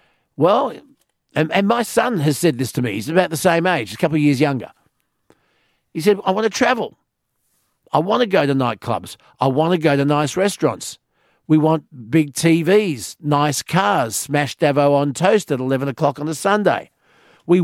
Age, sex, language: 50-69, male, English